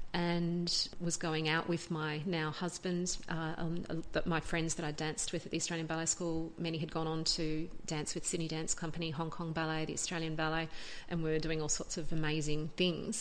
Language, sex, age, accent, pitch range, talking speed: English, female, 40-59, Australian, 155-175 Hz, 205 wpm